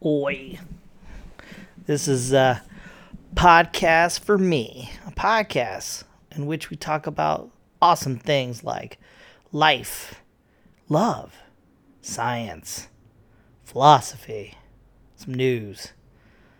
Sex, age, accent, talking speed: male, 30-49, American, 85 wpm